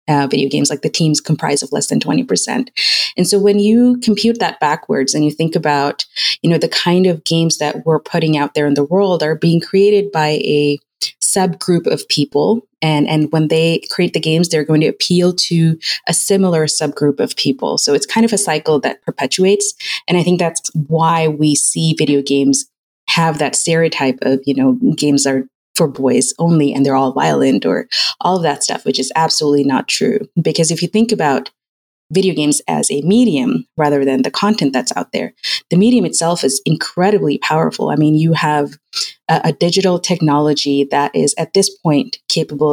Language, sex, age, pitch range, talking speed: English, female, 30-49, 145-180 Hz, 195 wpm